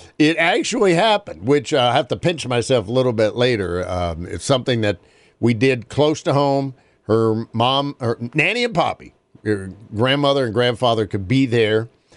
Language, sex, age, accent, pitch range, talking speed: English, male, 50-69, American, 115-170 Hz, 175 wpm